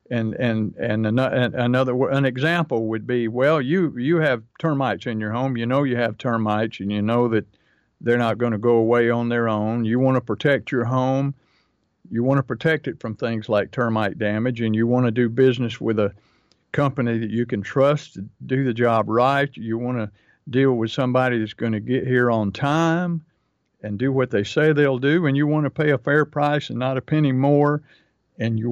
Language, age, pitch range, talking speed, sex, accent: English, 50-69, 115-145 Hz, 215 wpm, male, American